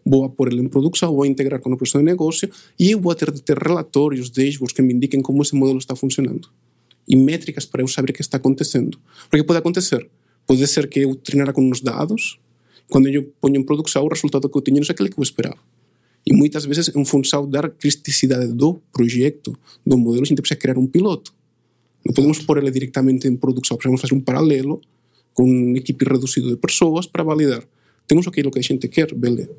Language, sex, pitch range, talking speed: Portuguese, male, 130-150 Hz, 225 wpm